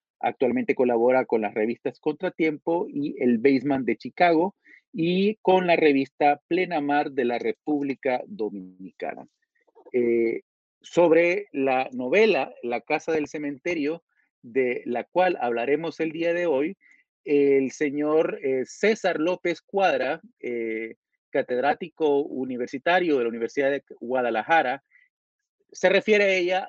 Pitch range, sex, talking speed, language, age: 135-175 Hz, male, 125 wpm, Spanish, 40-59